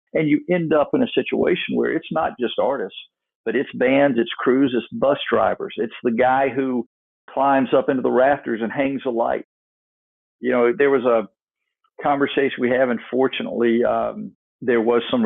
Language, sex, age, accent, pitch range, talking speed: English, male, 50-69, American, 115-140 Hz, 185 wpm